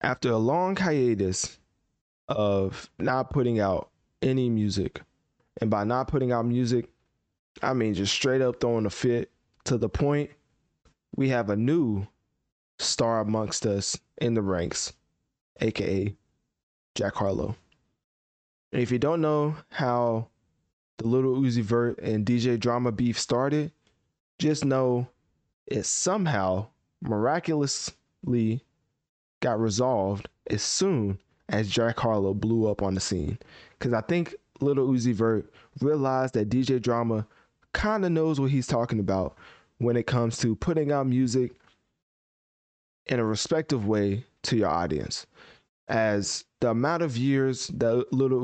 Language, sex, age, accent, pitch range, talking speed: English, male, 20-39, American, 110-130 Hz, 135 wpm